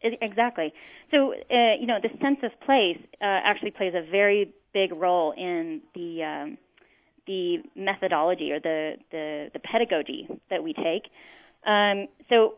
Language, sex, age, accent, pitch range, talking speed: English, female, 30-49, American, 175-230 Hz, 155 wpm